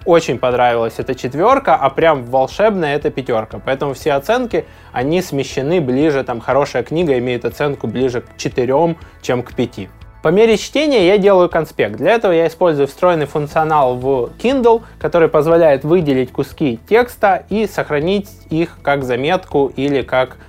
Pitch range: 130-170 Hz